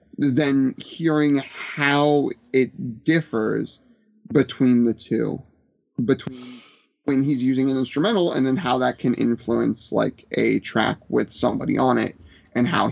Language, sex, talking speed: English, male, 135 wpm